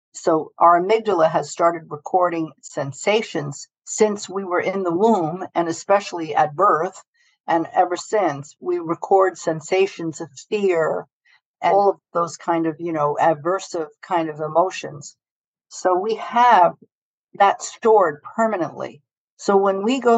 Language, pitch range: English, 165-215 Hz